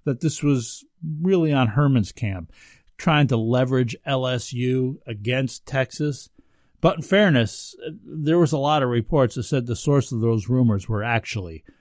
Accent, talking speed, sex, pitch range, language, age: American, 160 wpm, male, 115-155 Hz, English, 50-69